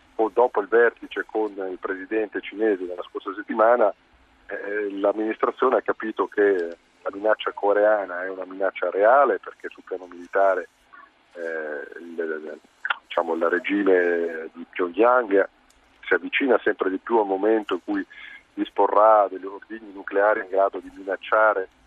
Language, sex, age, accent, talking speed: Italian, male, 40-59, native, 135 wpm